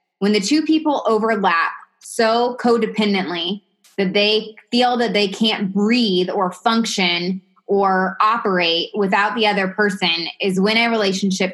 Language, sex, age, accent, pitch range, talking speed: English, female, 20-39, American, 180-210 Hz, 135 wpm